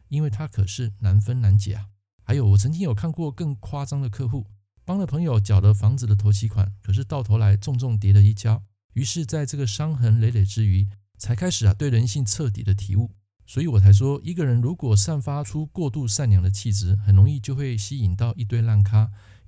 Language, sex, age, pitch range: Chinese, male, 50-69, 100-135 Hz